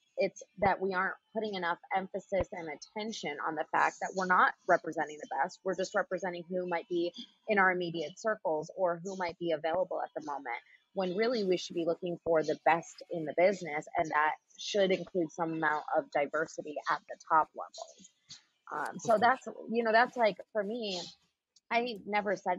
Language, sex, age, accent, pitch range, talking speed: English, female, 20-39, American, 165-195 Hz, 190 wpm